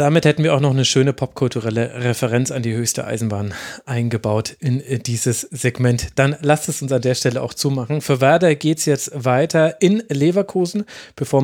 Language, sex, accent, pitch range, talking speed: German, male, German, 125-155 Hz, 185 wpm